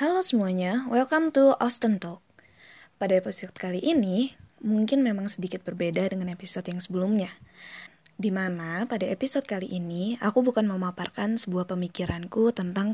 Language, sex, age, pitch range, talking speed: Indonesian, female, 20-39, 180-230 Hz, 135 wpm